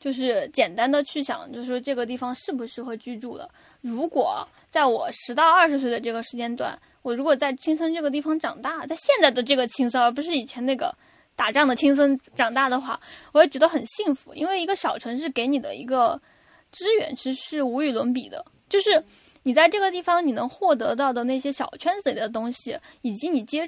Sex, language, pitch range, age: female, Chinese, 255-320 Hz, 10-29